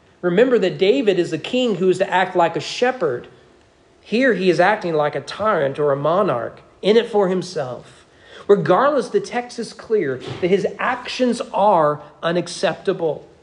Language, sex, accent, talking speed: English, male, American, 165 wpm